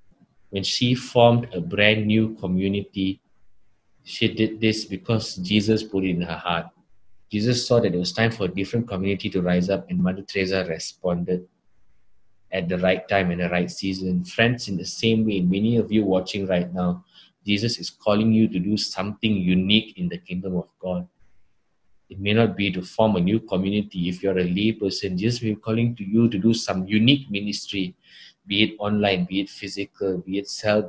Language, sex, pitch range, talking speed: English, male, 95-110 Hz, 190 wpm